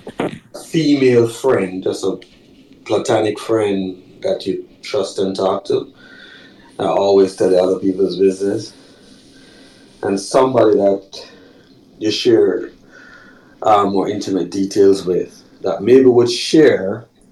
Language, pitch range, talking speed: English, 95-120 Hz, 110 wpm